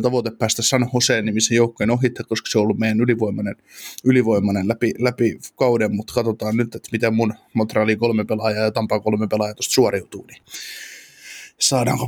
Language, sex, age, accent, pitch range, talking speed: Finnish, male, 20-39, native, 115-130 Hz, 175 wpm